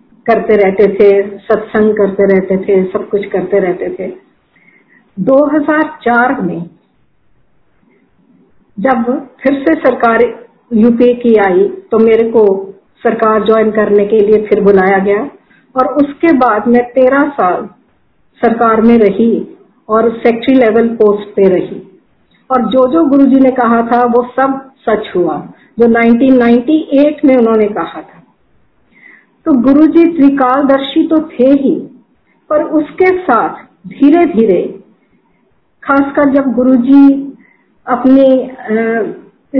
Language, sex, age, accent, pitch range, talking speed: Hindi, female, 50-69, native, 215-275 Hz, 125 wpm